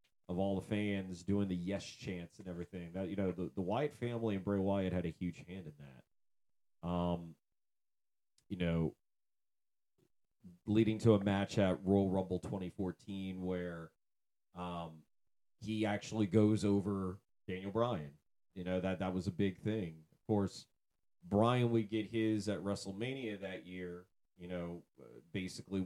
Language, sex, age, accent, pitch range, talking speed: English, male, 30-49, American, 90-105 Hz, 155 wpm